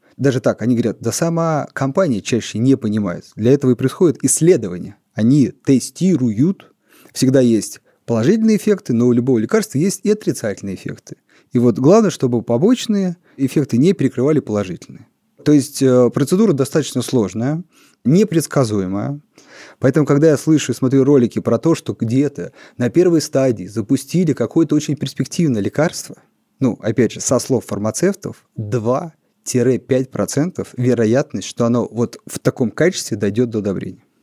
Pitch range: 120-150 Hz